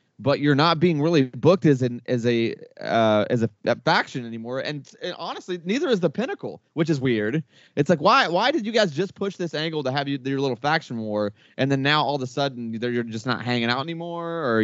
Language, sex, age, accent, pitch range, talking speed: English, male, 20-39, American, 115-150 Hz, 240 wpm